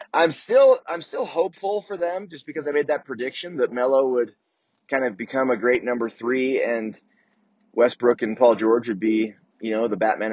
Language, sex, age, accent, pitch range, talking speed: English, male, 20-39, American, 115-160 Hz, 200 wpm